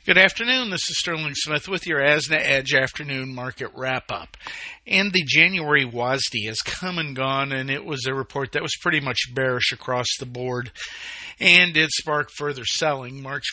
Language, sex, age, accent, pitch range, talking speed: English, male, 50-69, American, 130-165 Hz, 180 wpm